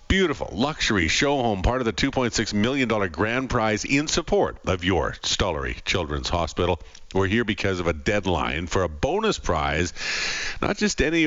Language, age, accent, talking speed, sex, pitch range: English, 50-69, American, 165 wpm, male, 80-105 Hz